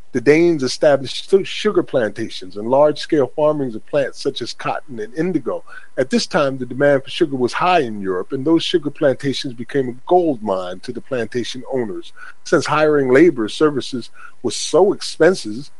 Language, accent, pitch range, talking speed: English, American, 130-195 Hz, 170 wpm